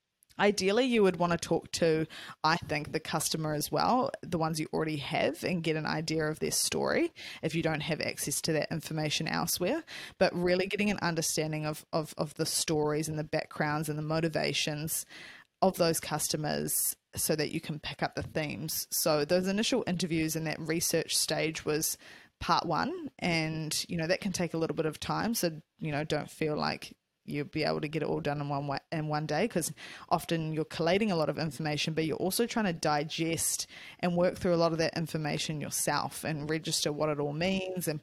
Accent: Australian